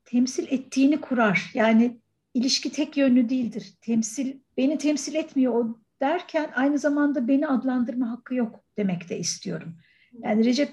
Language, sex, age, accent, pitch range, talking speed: Turkish, female, 60-79, native, 210-265 Hz, 140 wpm